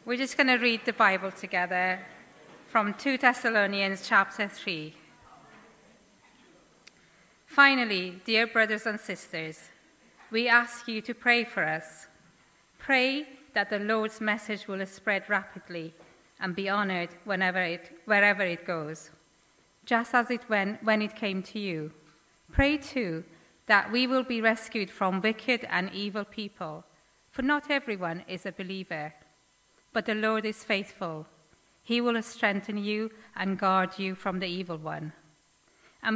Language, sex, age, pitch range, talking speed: English, female, 30-49, 180-225 Hz, 140 wpm